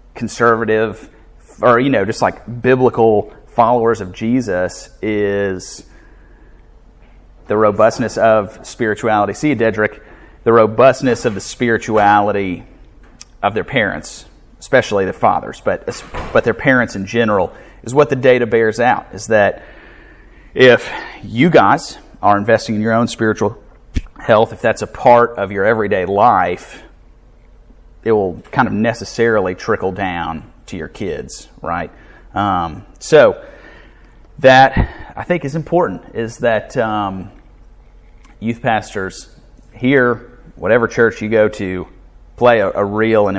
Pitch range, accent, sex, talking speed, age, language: 100-120 Hz, American, male, 130 wpm, 30-49, English